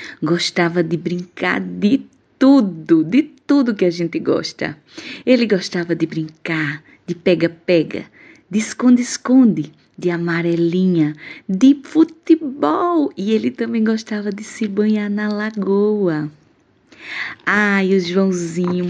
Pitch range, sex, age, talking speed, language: 170-245 Hz, female, 20-39, 115 wpm, Portuguese